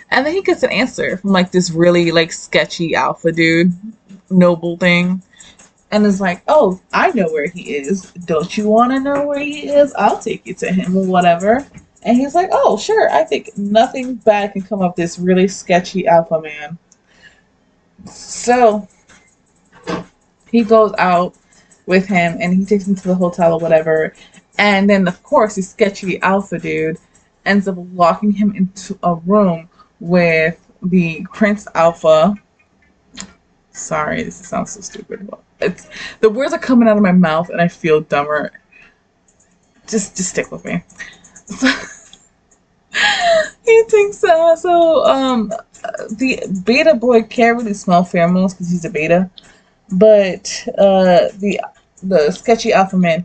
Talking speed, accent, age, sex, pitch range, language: 155 wpm, American, 20-39, female, 175-220 Hz, English